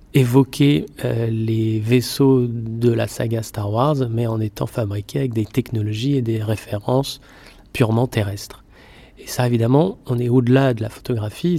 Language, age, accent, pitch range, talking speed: French, 30-49, French, 110-130 Hz, 155 wpm